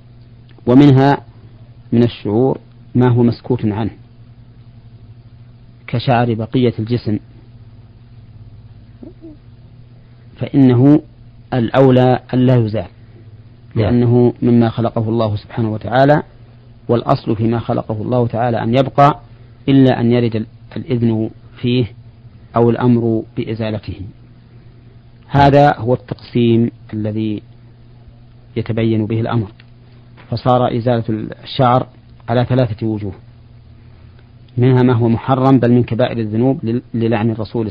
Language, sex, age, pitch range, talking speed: Arabic, male, 40-59, 115-120 Hz, 90 wpm